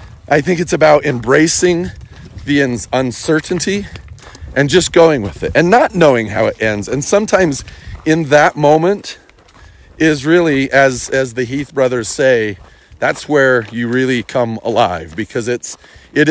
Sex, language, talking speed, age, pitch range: male, English, 145 wpm, 40-59, 110-160 Hz